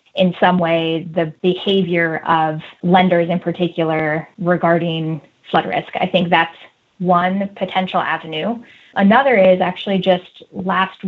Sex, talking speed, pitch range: female, 125 wpm, 170-200 Hz